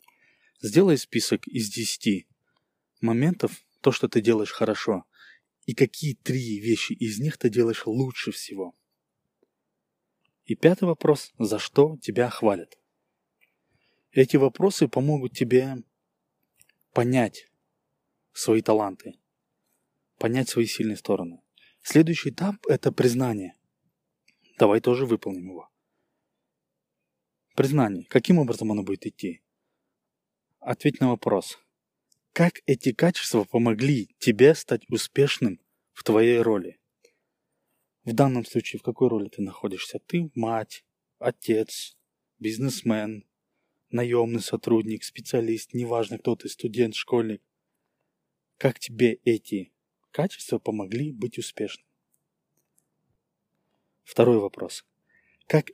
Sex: male